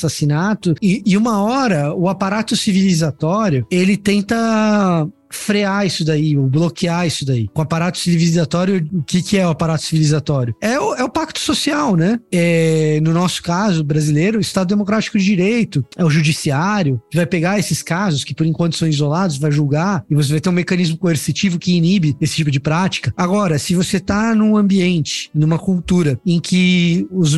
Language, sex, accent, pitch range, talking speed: Portuguese, male, Brazilian, 160-200 Hz, 180 wpm